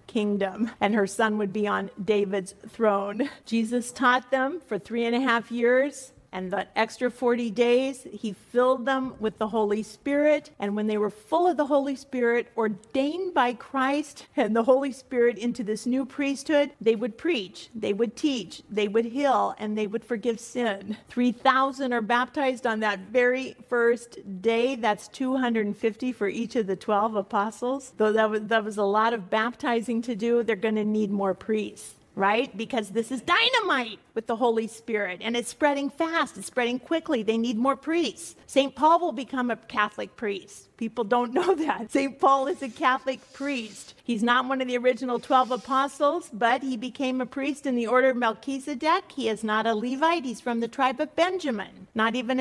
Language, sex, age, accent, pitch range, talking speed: English, female, 50-69, American, 225-280 Hz, 190 wpm